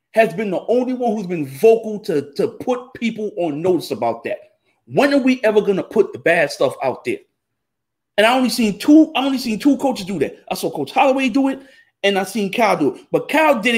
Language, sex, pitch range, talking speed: English, male, 180-245 Hz, 235 wpm